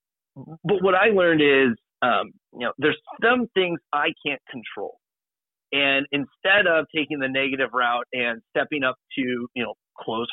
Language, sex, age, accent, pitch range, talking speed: English, male, 30-49, American, 130-170 Hz, 165 wpm